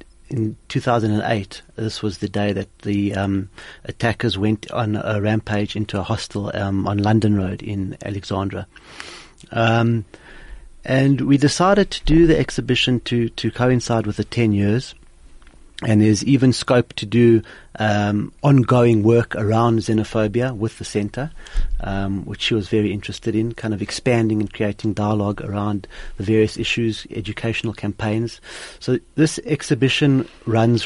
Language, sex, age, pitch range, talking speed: English, male, 30-49, 105-120 Hz, 145 wpm